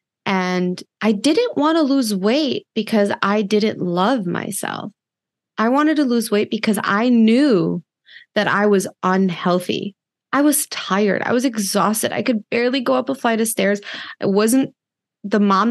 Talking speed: 165 wpm